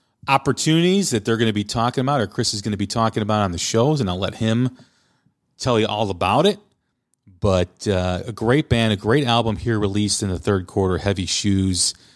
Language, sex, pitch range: English, male, 90-115 Hz